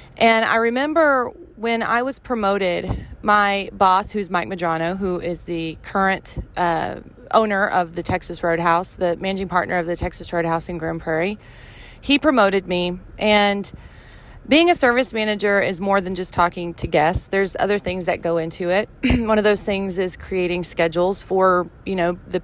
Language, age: English, 30-49